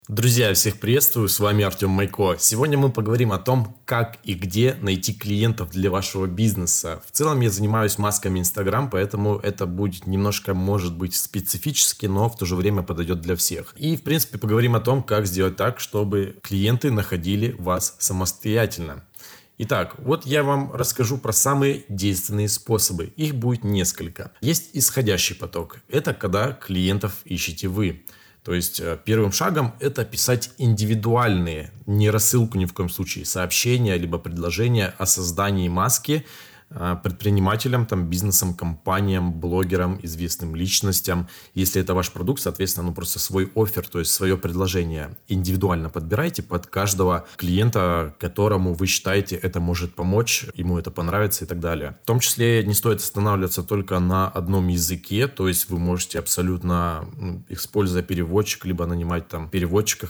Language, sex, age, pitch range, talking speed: Russian, male, 20-39, 90-110 Hz, 150 wpm